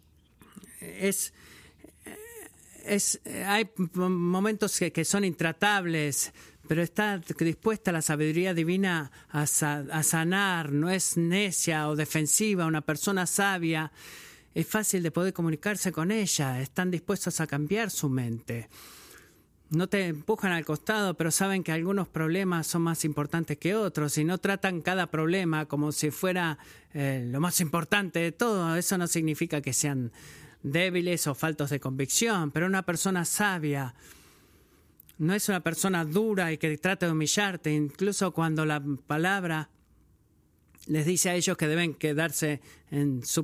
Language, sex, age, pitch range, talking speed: Spanish, male, 50-69, 150-185 Hz, 140 wpm